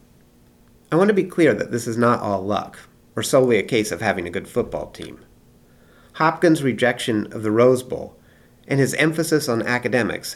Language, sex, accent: English, male, American